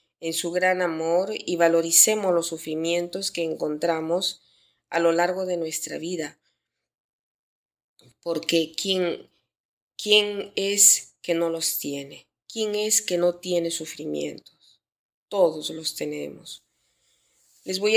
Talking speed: 115 wpm